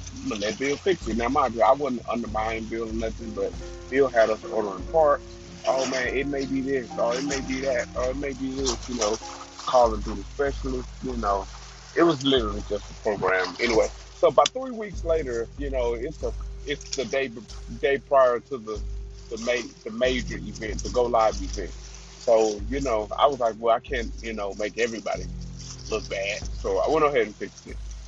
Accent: American